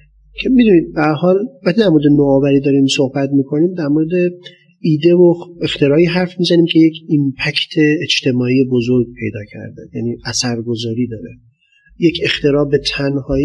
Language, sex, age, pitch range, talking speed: Persian, male, 30-49, 130-165 Hz, 145 wpm